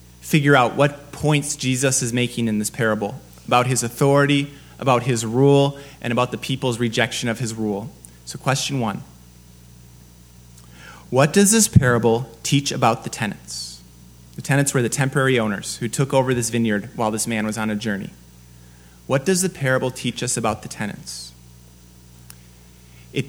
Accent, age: American, 30-49